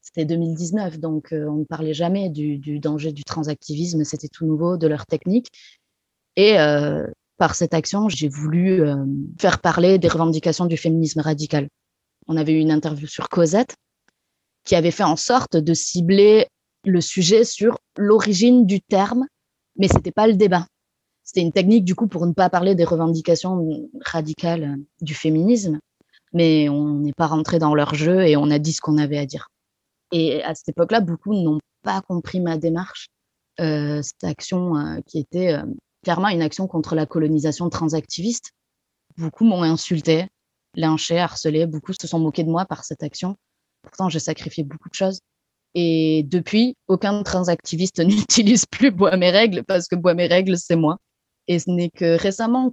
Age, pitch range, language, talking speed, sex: 20-39, 155-185 Hz, French, 175 wpm, female